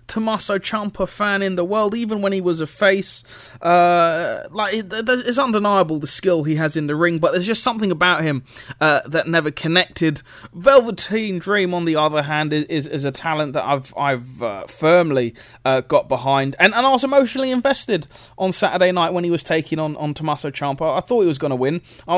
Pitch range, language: 145-195 Hz, English